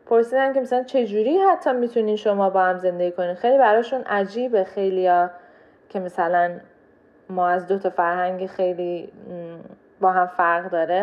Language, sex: Persian, female